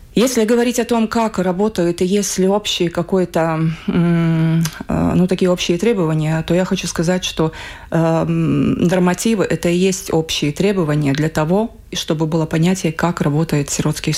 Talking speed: 150 wpm